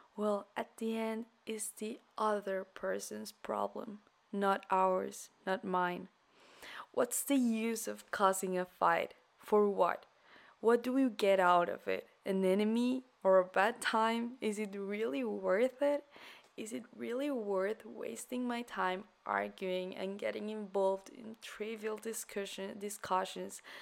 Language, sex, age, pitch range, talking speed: Spanish, female, 20-39, 185-220 Hz, 140 wpm